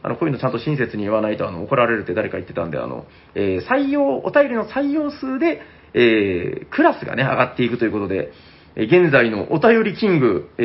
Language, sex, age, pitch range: Japanese, male, 30-49, 140-235 Hz